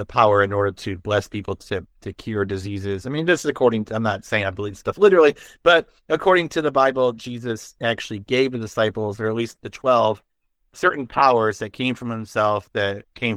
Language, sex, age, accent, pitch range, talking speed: English, male, 30-49, American, 105-135 Hz, 210 wpm